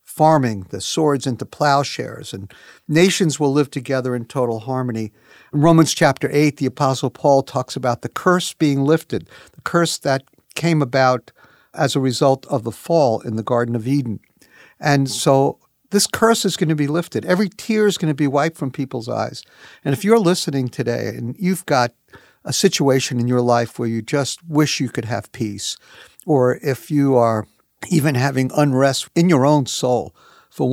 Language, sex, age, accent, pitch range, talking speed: English, male, 50-69, American, 120-150 Hz, 185 wpm